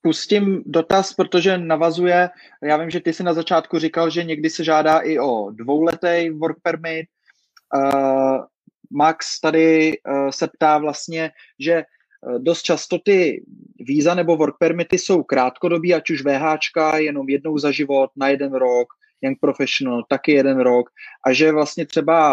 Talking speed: 155 wpm